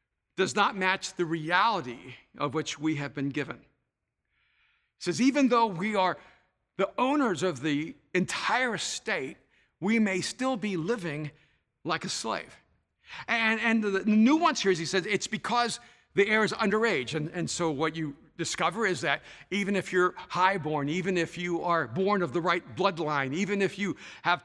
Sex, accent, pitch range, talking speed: male, American, 150-195 Hz, 175 wpm